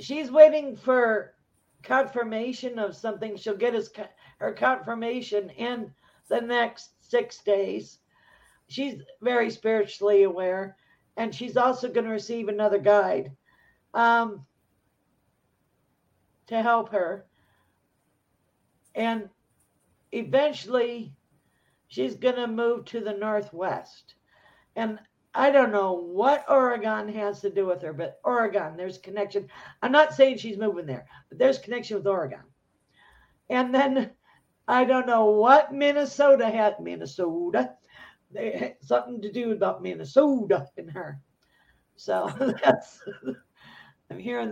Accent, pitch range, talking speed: American, 195-245 Hz, 120 wpm